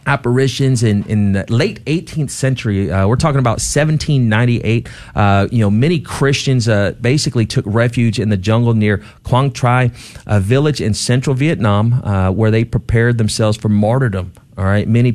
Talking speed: 165 wpm